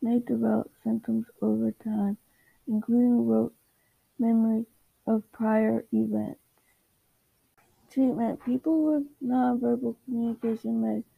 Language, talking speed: English, 90 wpm